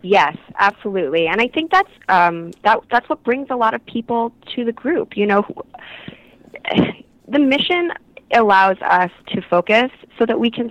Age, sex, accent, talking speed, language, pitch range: 20-39, female, American, 170 wpm, English, 185-235 Hz